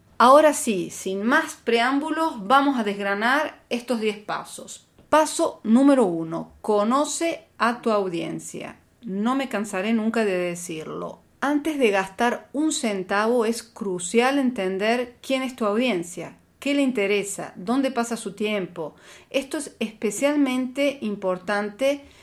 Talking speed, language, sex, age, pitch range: 125 wpm, Spanish, female, 40-59, 195-245 Hz